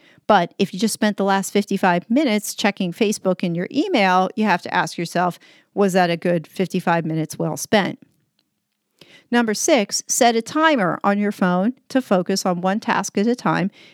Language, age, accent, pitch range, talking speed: English, 40-59, American, 185-250 Hz, 185 wpm